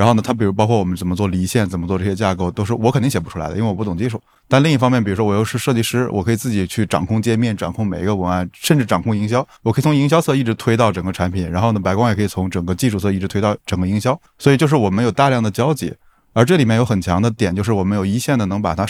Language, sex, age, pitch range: Chinese, male, 20-39, 100-125 Hz